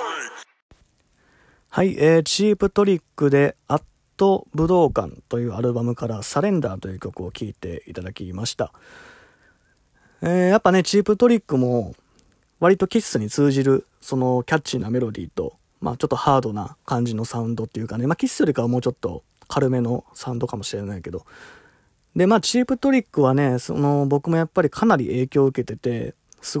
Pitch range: 120-170 Hz